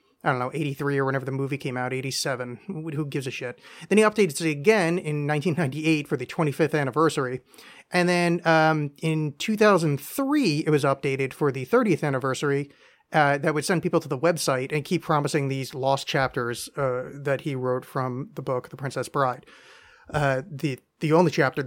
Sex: male